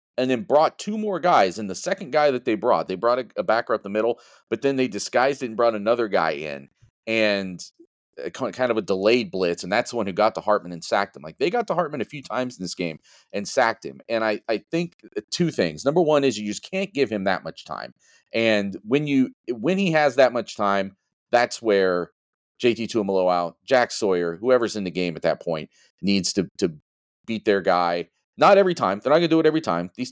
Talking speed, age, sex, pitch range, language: 235 wpm, 40-59, male, 100-150 Hz, English